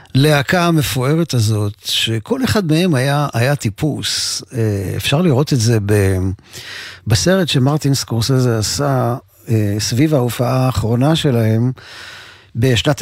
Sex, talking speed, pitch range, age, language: male, 100 wpm, 120-150 Hz, 40-59, Hebrew